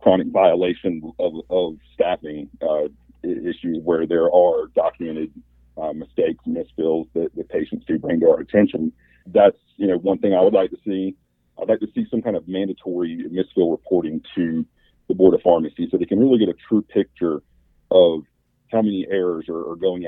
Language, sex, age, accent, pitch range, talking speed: English, male, 50-69, American, 80-110 Hz, 185 wpm